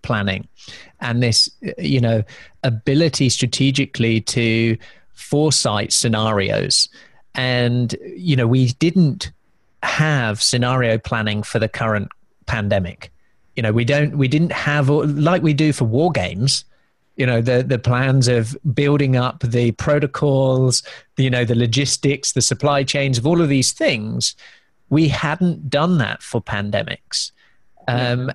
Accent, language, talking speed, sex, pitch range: British, English, 135 wpm, male, 120-145 Hz